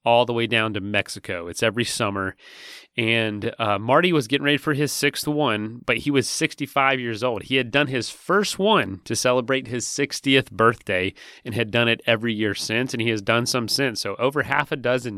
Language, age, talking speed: English, 30-49, 215 wpm